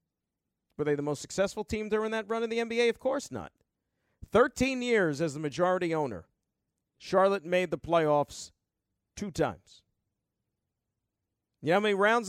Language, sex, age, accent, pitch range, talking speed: English, male, 40-59, American, 135-215 Hz, 155 wpm